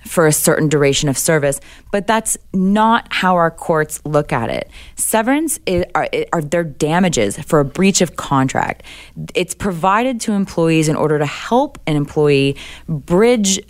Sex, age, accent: female, 20-39, American